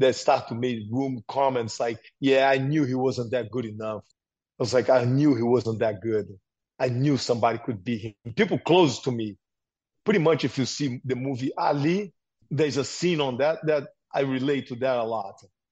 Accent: Brazilian